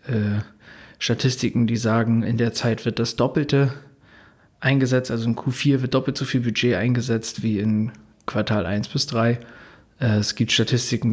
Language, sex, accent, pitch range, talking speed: German, male, German, 115-140 Hz, 150 wpm